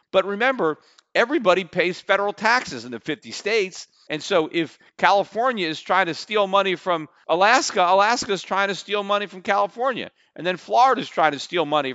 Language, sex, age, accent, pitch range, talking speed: English, male, 40-59, American, 155-200 Hz, 185 wpm